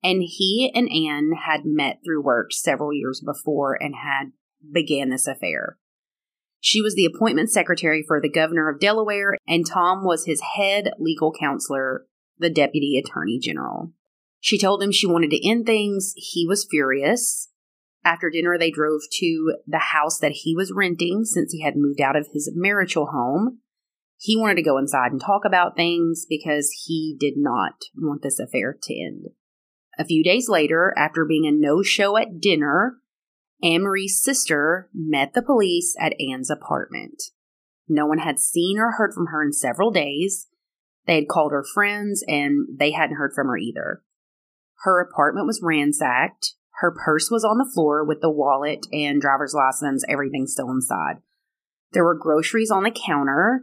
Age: 30-49